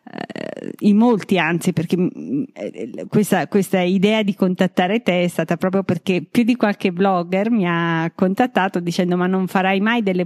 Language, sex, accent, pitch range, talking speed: Italian, female, native, 175-210 Hz, 160 wpm